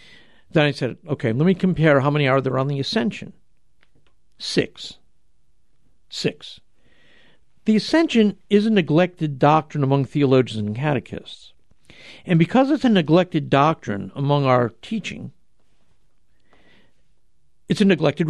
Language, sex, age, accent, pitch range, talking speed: English, male, 60-79, American, 145-200 Hz, 125 wpm